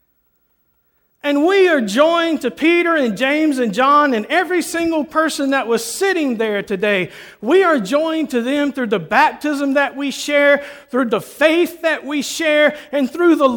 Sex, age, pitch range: male, 50-69, 210-310 Hz